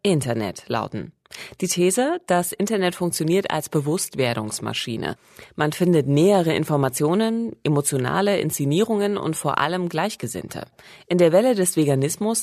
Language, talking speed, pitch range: German, 115 wpm, 130-180 Hz